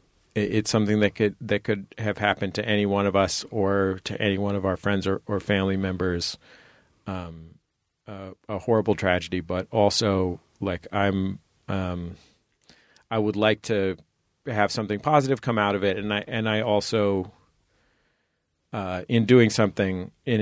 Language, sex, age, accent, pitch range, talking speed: English, male, 40-59, American, 95-110 Hz, 160 wpm